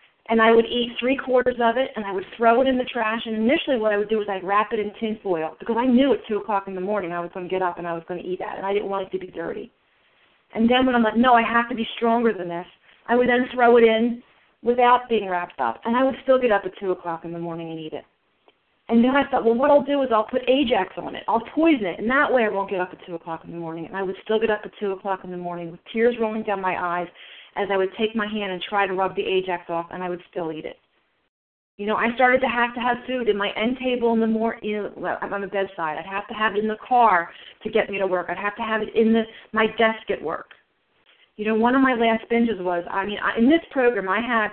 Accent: American